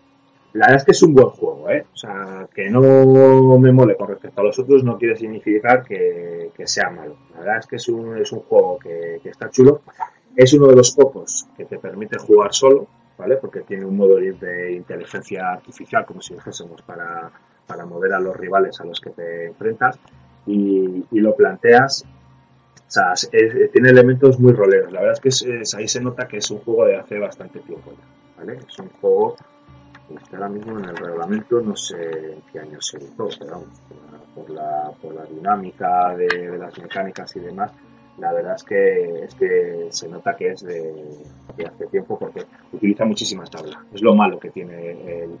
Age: 30-49